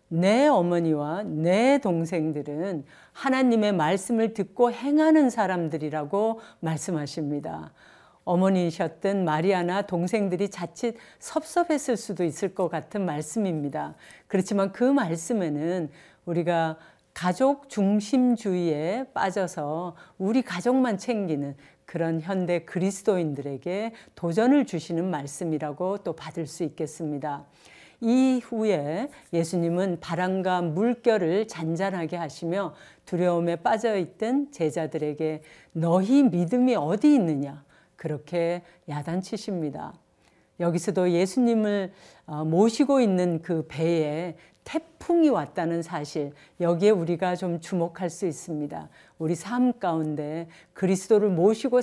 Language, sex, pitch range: Korean, female, 165-215 Hz